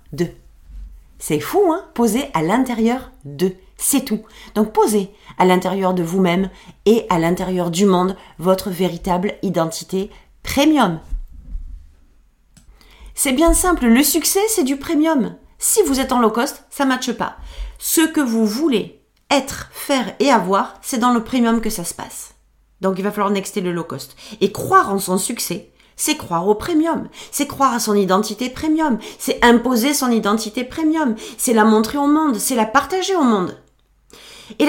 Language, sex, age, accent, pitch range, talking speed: French, female, 40-59, French, 195-280 Hz, 170 wpm